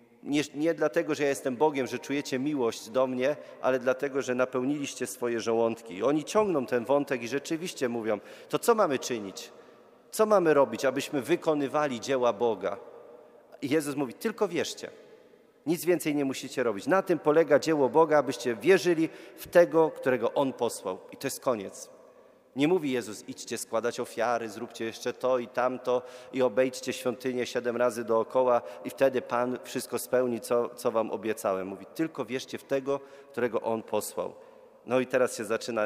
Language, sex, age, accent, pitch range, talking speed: Polish, male, 40-59, native, 125-165 Hz, 170 wpm